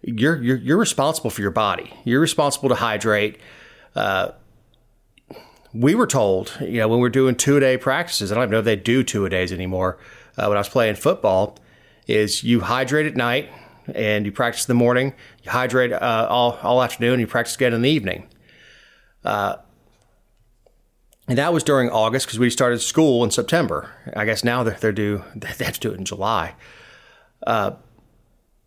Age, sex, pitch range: 30-49, male, 110-135 Hz